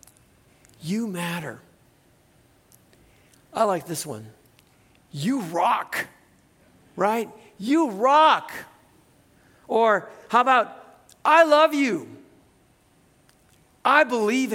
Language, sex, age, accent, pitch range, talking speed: English, male, 50-69, American, 140-215 Hz, 80 wpm